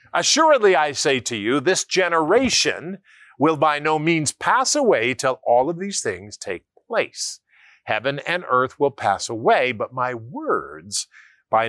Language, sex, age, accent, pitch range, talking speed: English, male, 50-69, American, 125-185 Hz, 155 wpm